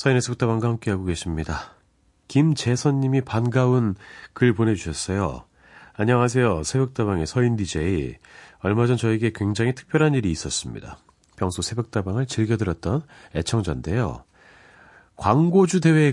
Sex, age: male, 40-59